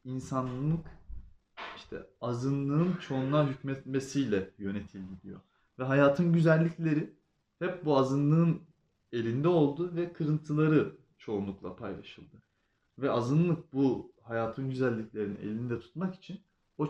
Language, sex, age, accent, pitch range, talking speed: English, male, 30-49, Turkish, 110-150 Hz, 95 wpm